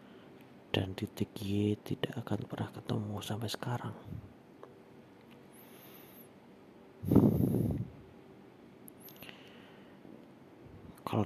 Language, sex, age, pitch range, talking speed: Indonesian, male, 40-59, 100-115 Hz, 55 wpm